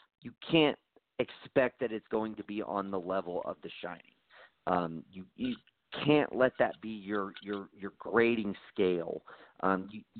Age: 40-59